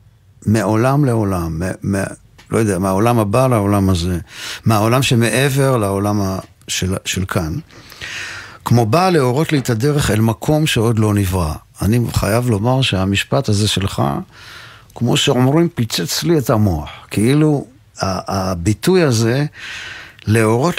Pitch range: 100-130 Hz